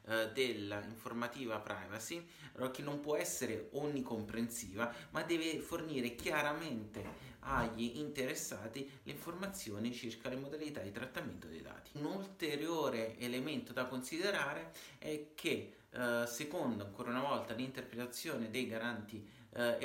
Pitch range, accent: 115-145 Hz, native